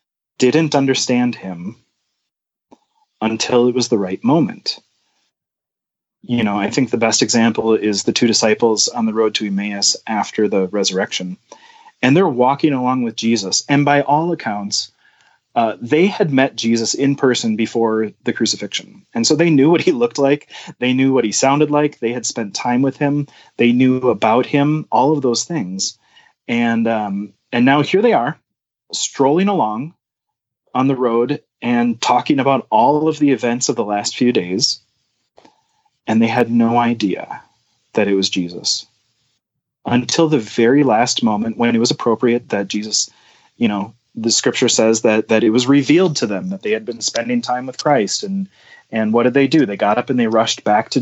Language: English